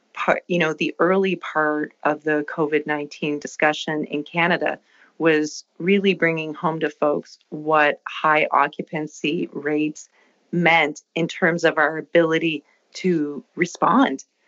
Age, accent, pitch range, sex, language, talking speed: 30-49, American, 150-170 Hz, female, English, 120 wpm